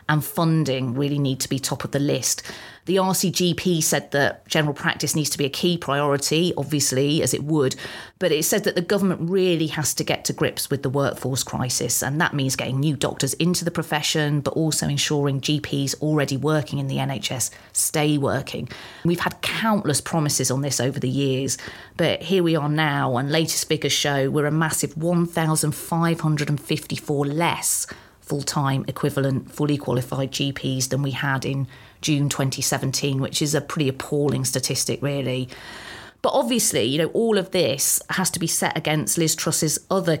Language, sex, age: English, female, 30-49